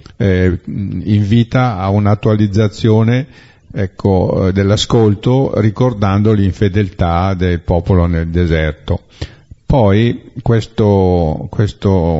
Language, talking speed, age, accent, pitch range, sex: Italian, 70 wpm, 50-69, native, 95-115 Hz, male